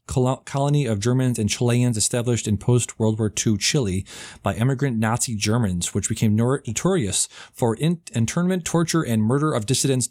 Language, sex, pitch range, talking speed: English, male, 105-130 Hz, 150 wpm